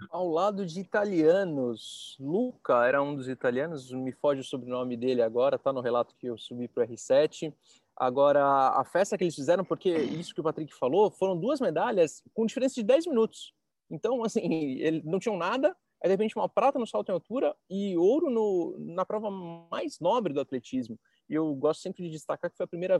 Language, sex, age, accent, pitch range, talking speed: Portuguese, male, 20-39, Brazilian, 140-195 Hz, 200 wpm